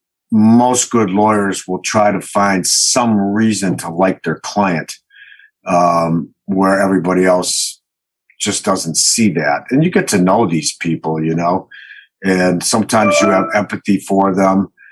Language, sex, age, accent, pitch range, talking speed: English, male, 50-69, American, 90-105 Hz, 150 wpm